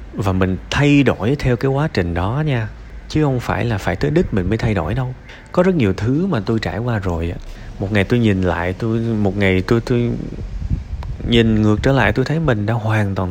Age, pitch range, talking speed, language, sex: 20-39, 95-130 Hz, 230 wpm, Vietnamese, male